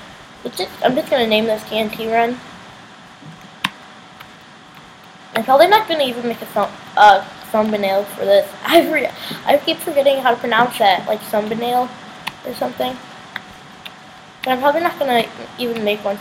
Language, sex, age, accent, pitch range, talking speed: English, female, 10-29, American, 210-275 Hz, 155 wpm